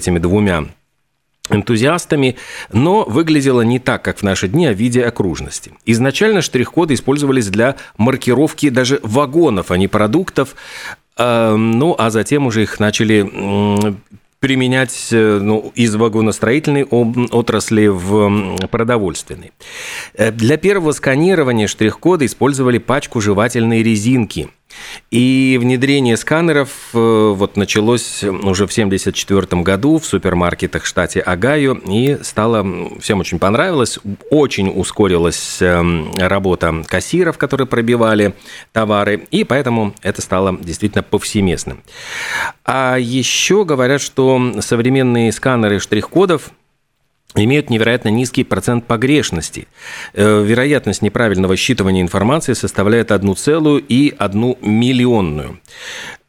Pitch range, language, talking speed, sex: 100-130 Hz, Russian, 105 wpm, male